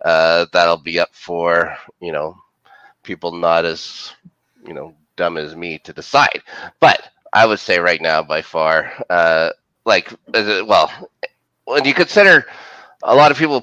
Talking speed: 160 wpm